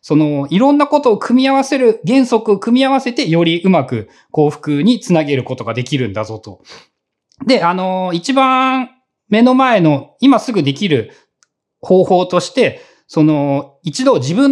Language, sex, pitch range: Japanese, male, 140-230 Hz